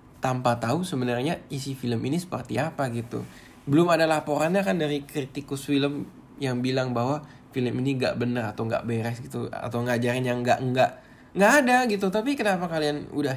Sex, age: male, 20-39